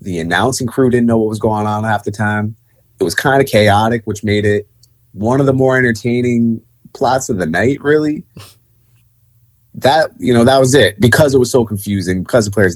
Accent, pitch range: American, 95-115 Hz